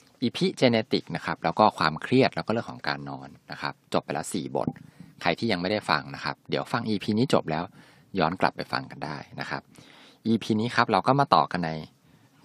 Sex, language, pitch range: male, Thai, 85-130 Hz